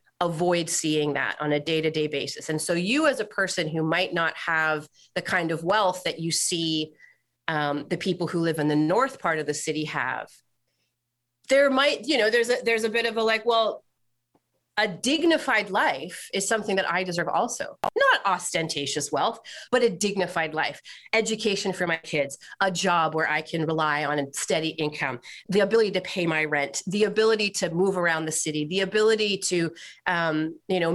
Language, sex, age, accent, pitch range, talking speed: English, female, 30-49, American, 160-215 Hz, 190 wpm